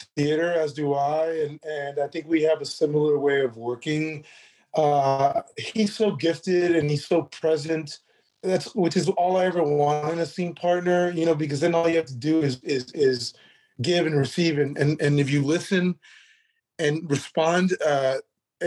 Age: 30-49